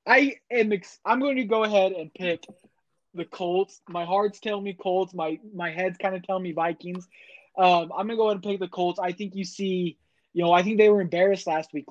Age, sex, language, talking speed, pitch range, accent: 20-39, male, English, 230 wpm, 165-195 Hz, American